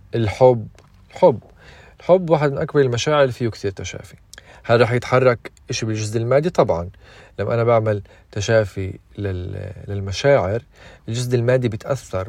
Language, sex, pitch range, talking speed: Arabic, male, 105-130 Hz, 125 wpm